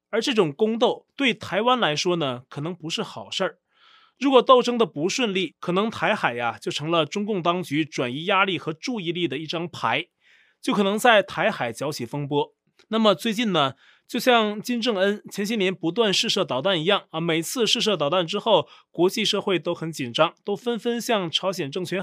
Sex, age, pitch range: male, 20-39, 170-220 Hz